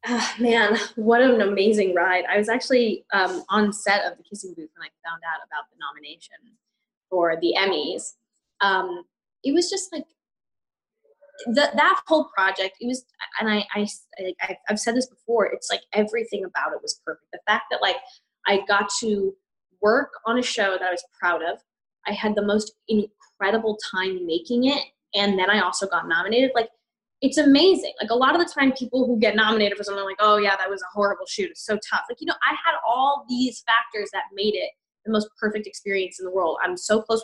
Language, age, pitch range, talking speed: English, 10-29, 190-240 Hz, 210 wpm